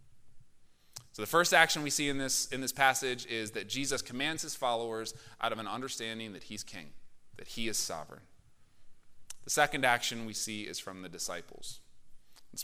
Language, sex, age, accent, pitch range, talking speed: English, male, 30-49, American, 115-145 Hz, 175 wpm